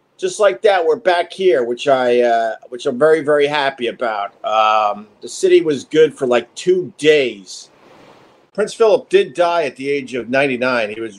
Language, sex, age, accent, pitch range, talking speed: English, male, 50-69, American, 135-195 Hz, 195 wpm